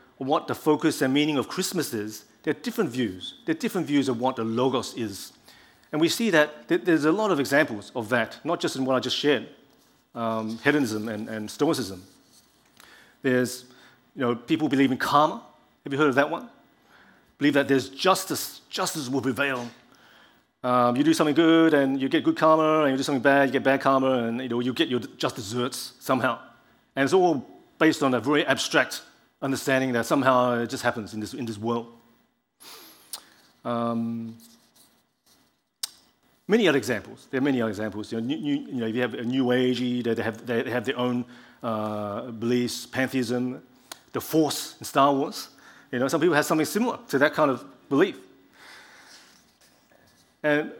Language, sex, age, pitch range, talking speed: English, male, 40-59, 120-150 Hz, 185 wpm